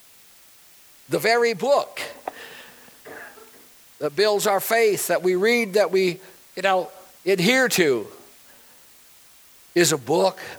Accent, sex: American, male